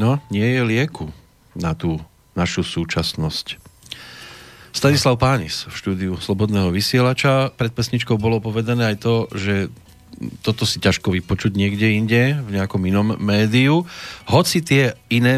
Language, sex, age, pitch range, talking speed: Slovak, male, 40-59, 90-110 Hz, 135 wpm